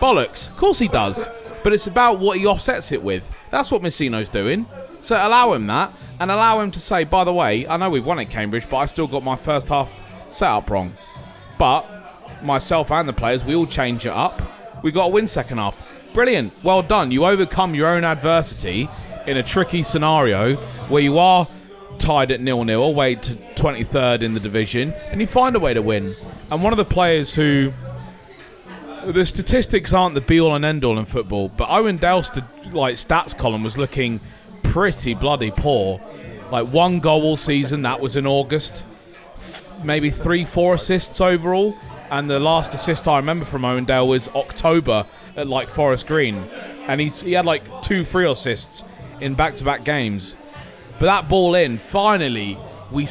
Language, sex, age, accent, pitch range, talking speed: English, male, 30-49, British, 125-180 Hz, 190 wpm